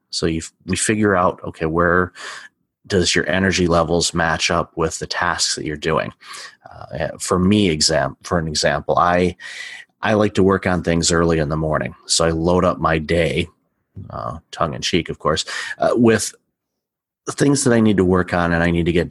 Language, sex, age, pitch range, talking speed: English, male, 30-49, 80-95 Hz, 200 wpm